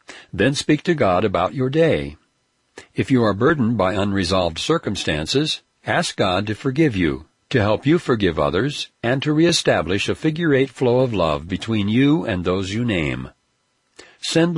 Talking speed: 160 wpm